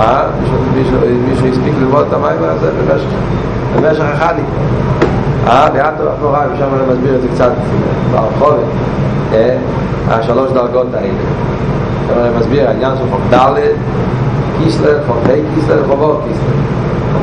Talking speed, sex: 135 wpm, male